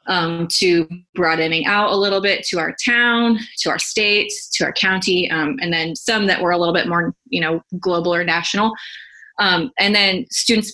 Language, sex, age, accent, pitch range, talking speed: English, female, 20-39, American, 175-215 Hz, 195 wpm